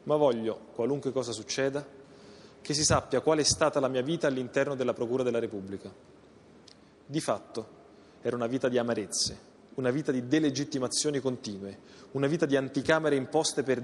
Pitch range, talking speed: 130-165 Hz, 160 wpm